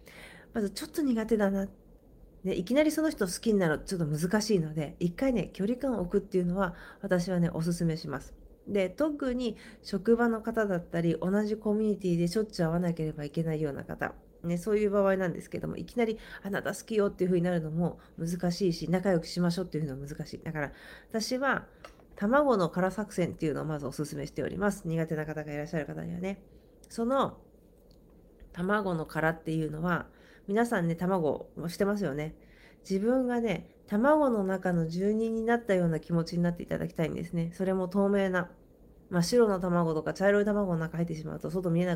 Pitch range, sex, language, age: 170-220 Hz, female, Japanese, 40-59